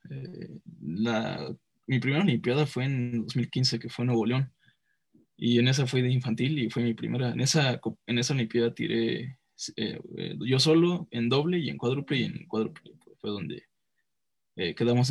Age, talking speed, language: 10-29, 175 wpm, Spanish